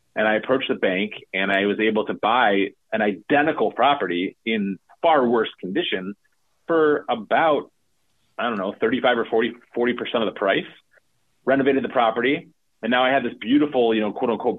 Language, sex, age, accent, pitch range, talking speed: English, male, 30-49, American, 100-125 Hz, 175 wpm